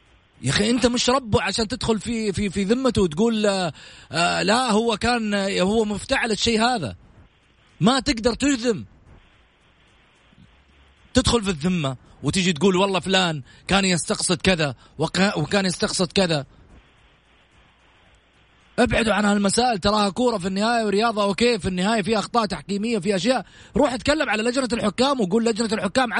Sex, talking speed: male, 140 wpm